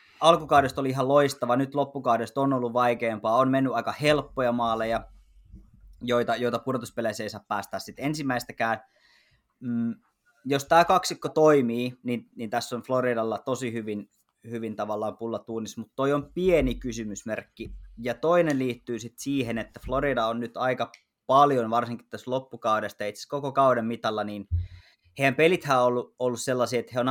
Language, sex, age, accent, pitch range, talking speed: Finnish, male, 20-39, native, 110-130 Hz, 150 wpm